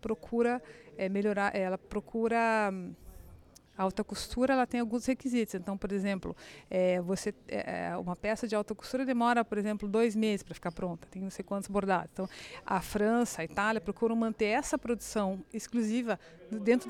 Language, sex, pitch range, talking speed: Portuguese, female, 195-235 Hz, 170 wpm